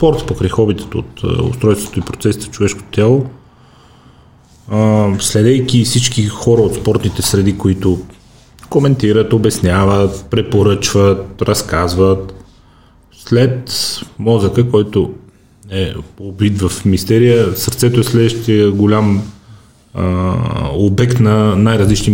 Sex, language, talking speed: male, Bulgarian, 90 wpm